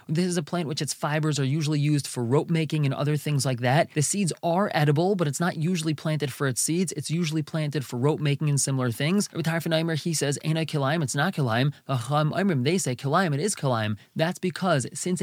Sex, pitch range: male, 140-170 Hz